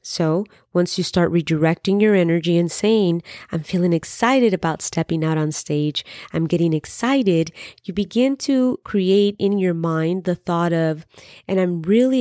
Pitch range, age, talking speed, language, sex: 160-190 Hz, 30-49, 160 wpm, English, female